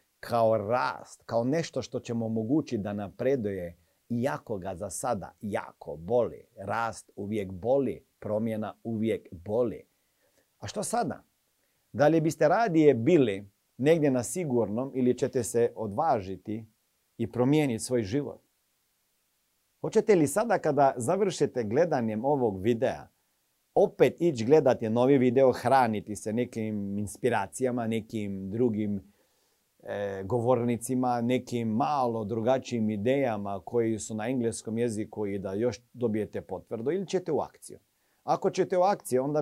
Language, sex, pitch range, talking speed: Croatian, male, 105-130 Hz, 125 wpm